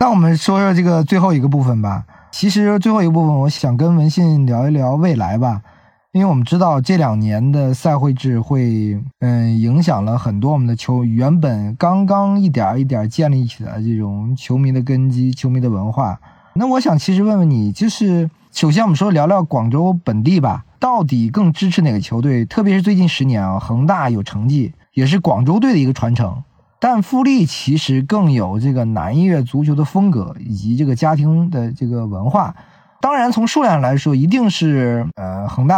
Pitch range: 120-175 Hz